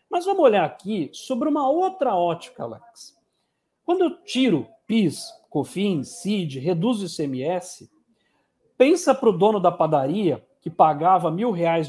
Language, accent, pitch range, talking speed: Portuguese, Brazilian, 145-205 Hz, 135 wpm